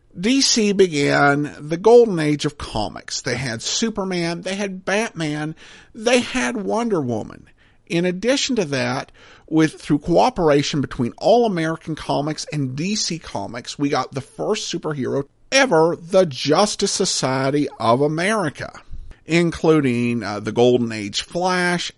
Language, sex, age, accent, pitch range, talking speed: English, male, 50-69, American, 140-205 Hz, 130 wpm